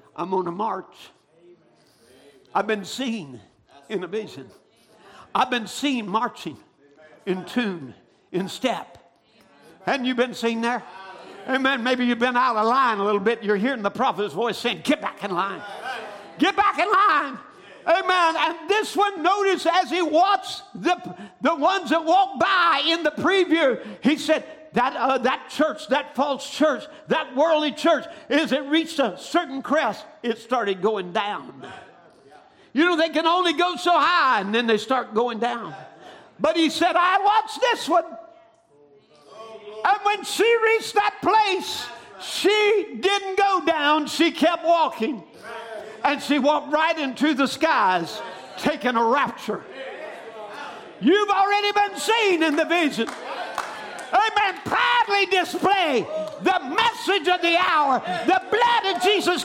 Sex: male